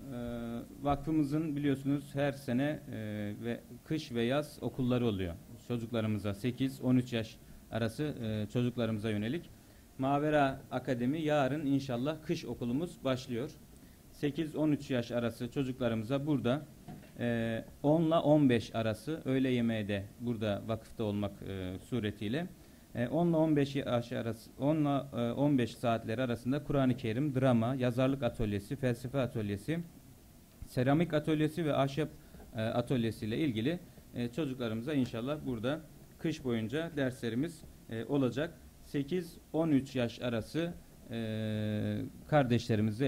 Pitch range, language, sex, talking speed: 115-145 Hz, Turkish, male, 95 wpm